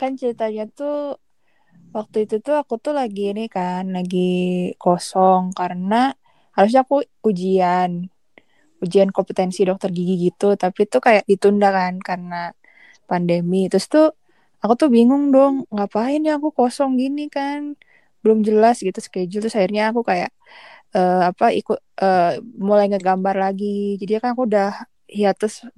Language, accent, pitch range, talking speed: Indonesian, native, 190-245 Hz, 145 wpm